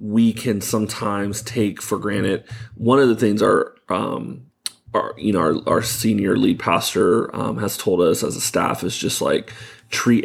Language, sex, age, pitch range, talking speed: English, male, 30-49, 105-115 Hz, 180 wpm